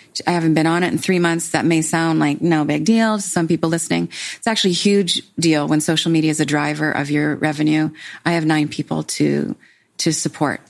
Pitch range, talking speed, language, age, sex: 155-185 Hz, 225 wpm, English, 30-49, female